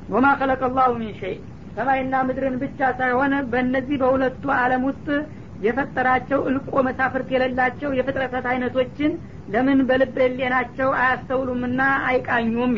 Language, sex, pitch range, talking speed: Amharic, female, 245-260 Hz, 115 wpm